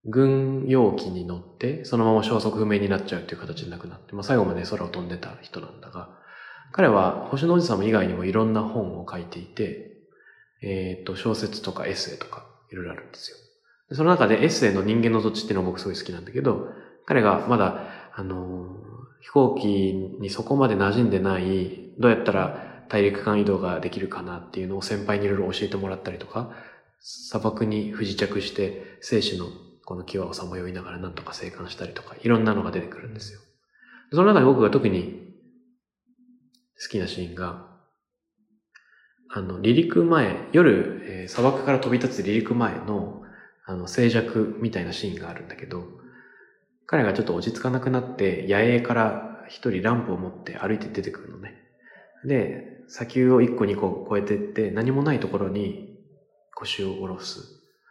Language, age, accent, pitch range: English, 20-39, Japanese, 95-125 Hz